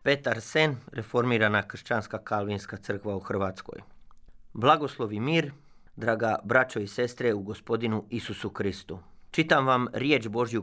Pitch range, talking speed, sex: 105-140 Hz, 125 wpm, male